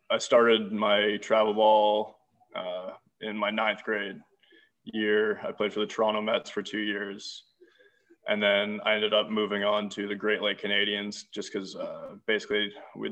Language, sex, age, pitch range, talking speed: English, male, 20-39, 105-115 Hz, 165 wpm